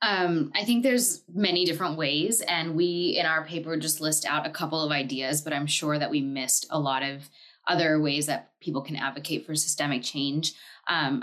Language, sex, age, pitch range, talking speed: English, female, 20-39, 145-170 Hz, 205 wpm